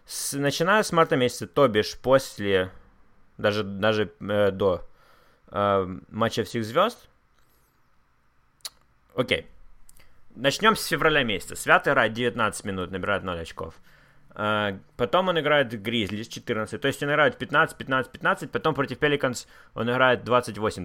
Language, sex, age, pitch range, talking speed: Russian, male, 20-39, 105-145 Hz, 140 wpm